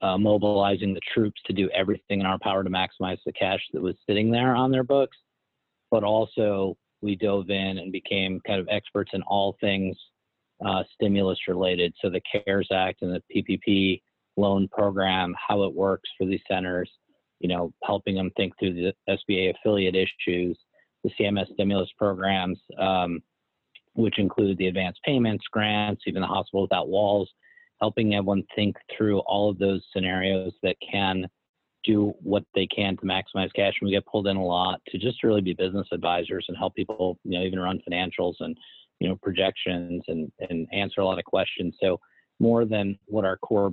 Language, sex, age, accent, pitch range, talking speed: English, male, 30-49, American, 95-105 Hz, 185 wpm